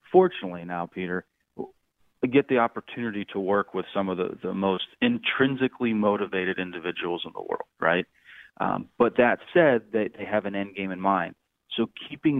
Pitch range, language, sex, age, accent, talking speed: 95-110 Hz, English, male, 30-49, American, 175 wpm